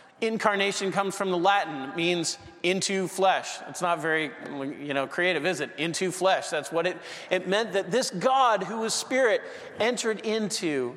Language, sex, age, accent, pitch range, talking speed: English, male, 40-59, American, 155-195 Hz, 175 wpm